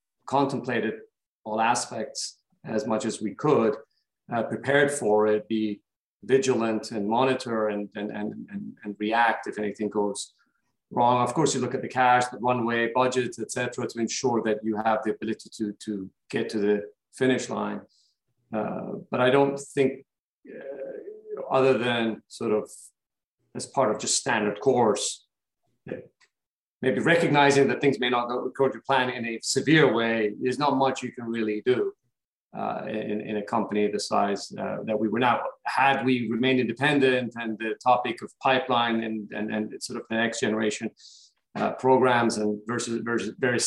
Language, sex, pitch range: English, male, 110-130 Hz